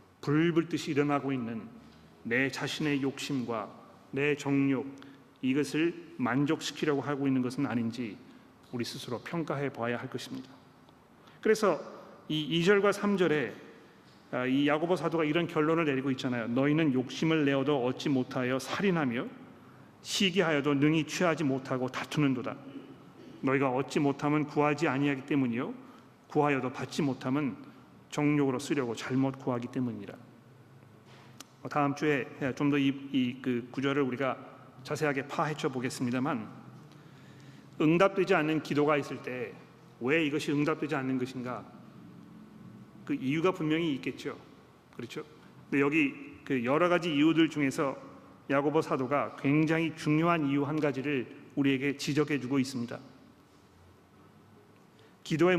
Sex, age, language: male, 40-59, Korean